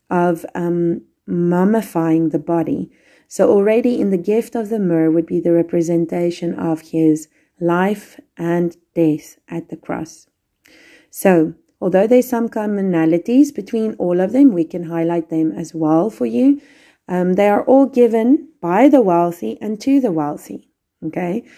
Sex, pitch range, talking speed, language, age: female, 170-225 Hz, 155 wpm, English, 30-49